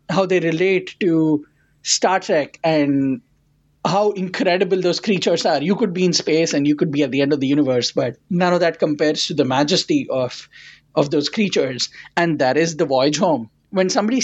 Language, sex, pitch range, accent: English, male, 150-190 Hz, Indian